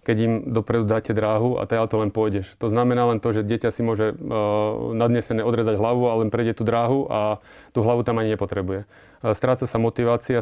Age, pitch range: 30-49, 110-120 Hz